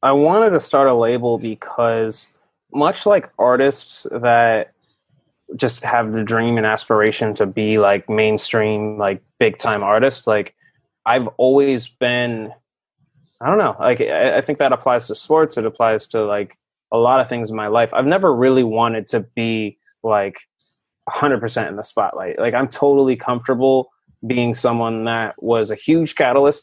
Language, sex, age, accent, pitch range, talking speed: English, male, 20-39, American, 110-130 Hz, 165 wpm